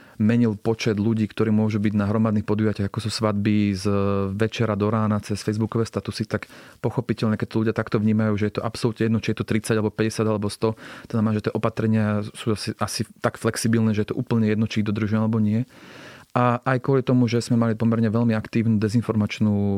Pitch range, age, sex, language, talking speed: 105-115 Hz, 30-49, male, Slovak, 210 wpm